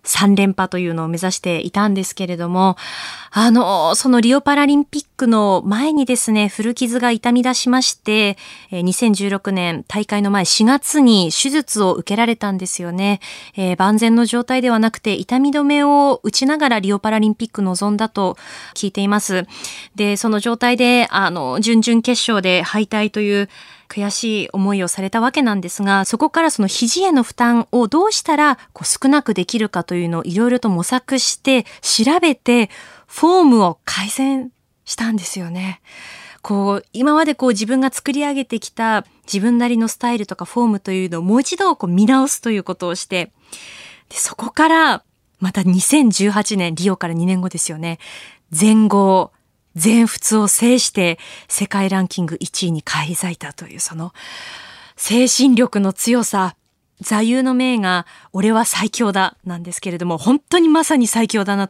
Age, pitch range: 20-39, 190-245 Hz